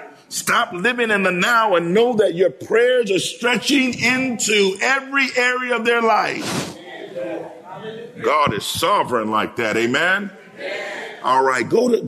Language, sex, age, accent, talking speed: English, male, 50-69, American, 140 wpm